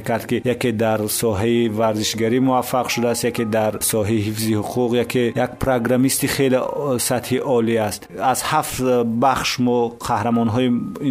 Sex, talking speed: male, 140 wpm